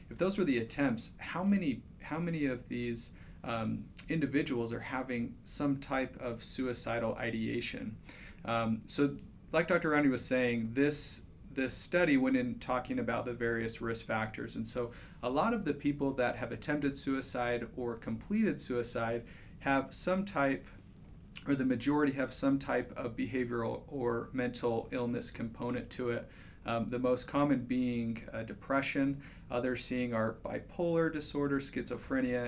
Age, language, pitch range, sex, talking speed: 40-59, English, 115-140 Hz, male, 155 wpm